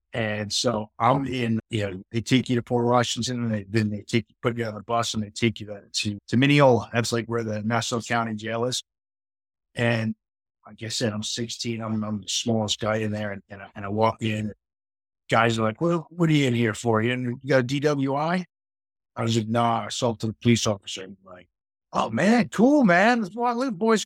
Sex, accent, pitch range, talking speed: male, American, 105-130 Hz, 235 wpm